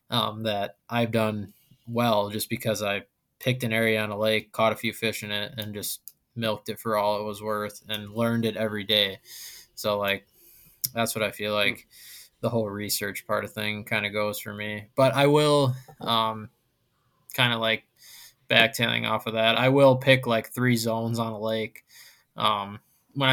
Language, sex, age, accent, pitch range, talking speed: English, male, 20-39, American, 110-125 Hz, 190 wpm